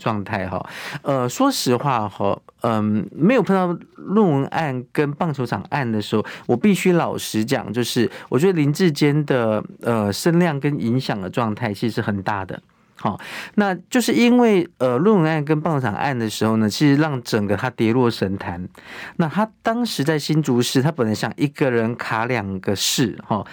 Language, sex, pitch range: Chinese, male, 110-155 Hz